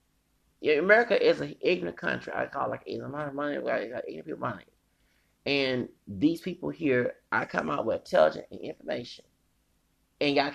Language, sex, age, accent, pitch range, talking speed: English, male, 30-49, American, 115-145 Hz, 190 wpm